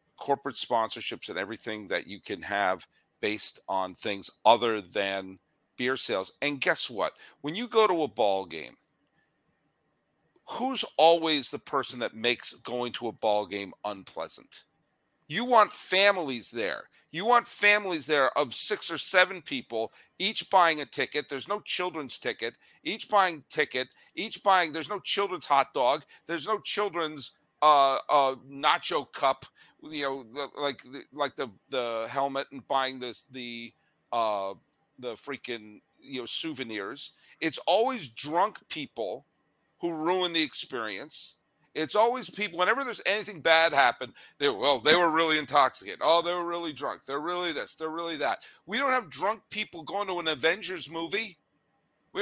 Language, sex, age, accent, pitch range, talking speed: English, male, 50-69, American, 135-190 Hz, 155 wpm